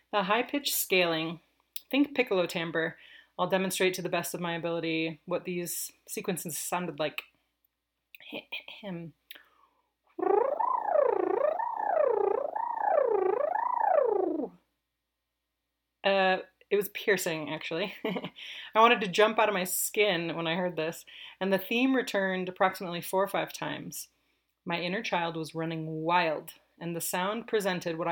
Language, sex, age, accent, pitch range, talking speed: English, female, 30-49, American, 170-215 Hz, 120 wpm